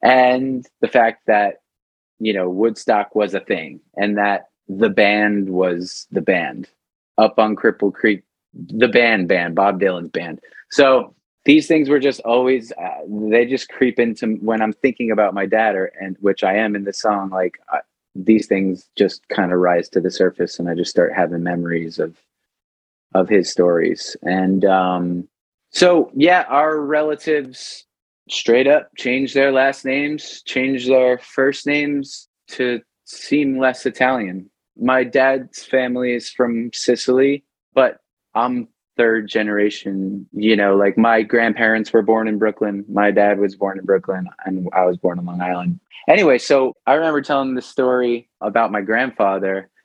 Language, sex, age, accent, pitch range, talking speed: English, male, 30-49, American, 95-130 Hz, 160 wpm